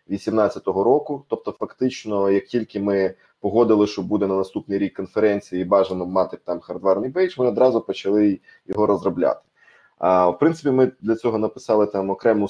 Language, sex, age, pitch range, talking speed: Ukrainian, male, 20-39, 95-115 Hz, 160 wpm